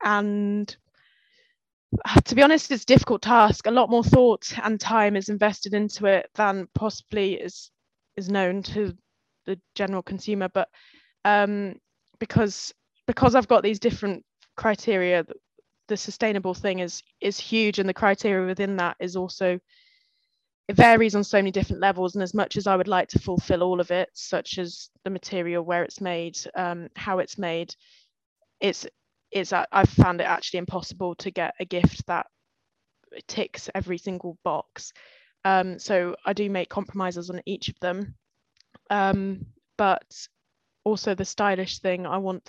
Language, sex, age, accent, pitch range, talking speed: English, female, 10-29, British, 180-210 Hz, 160 wpm